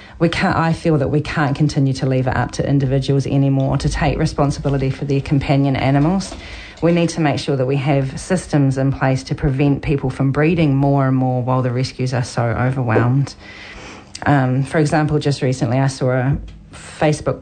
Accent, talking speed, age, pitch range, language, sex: Australian, 195 wpm, 40-59, 135-155 Hz, Filipino, female